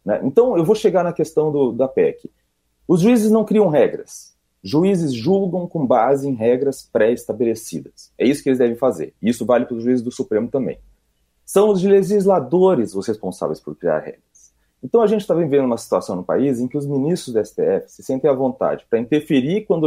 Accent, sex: Brazilian, male